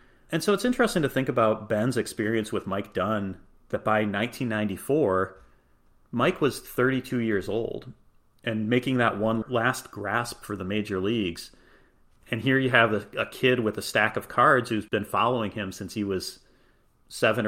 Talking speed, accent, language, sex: 170 wpm, American, English, male